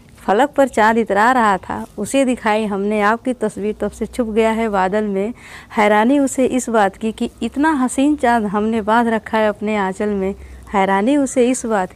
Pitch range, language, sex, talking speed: 205-245 Hz, Hindi, female, 195 wpm